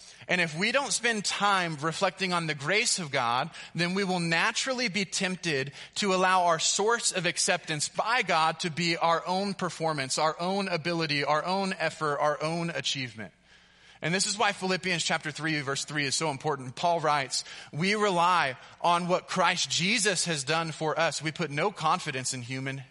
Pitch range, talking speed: 145-180 Hz, 185 wpm